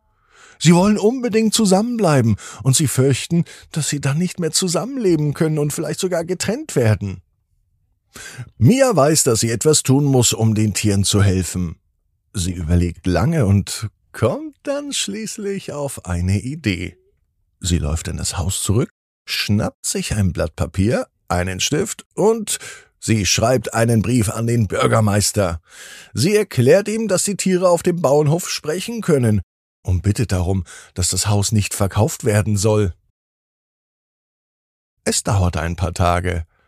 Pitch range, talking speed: 95-155 Hz, 145 wpm